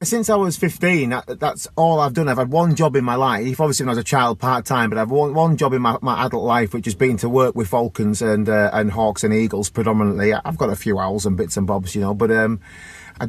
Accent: British